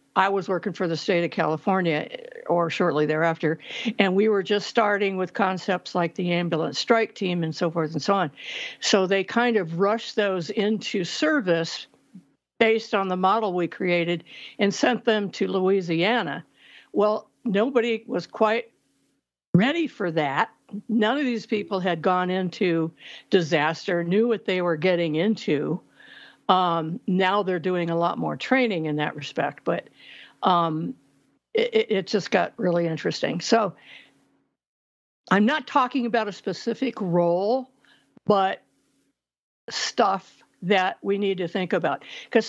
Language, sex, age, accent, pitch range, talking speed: English, female, 60-79, American, 175-220 Hz, 150 wpm